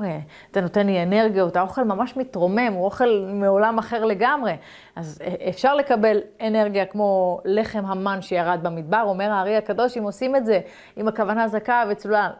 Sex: female